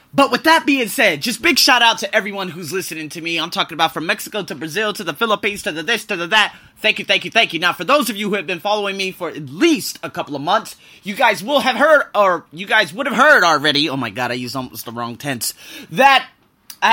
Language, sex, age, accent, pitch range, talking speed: English, male, 20-39, American, 165-230 Hz, 275 wpm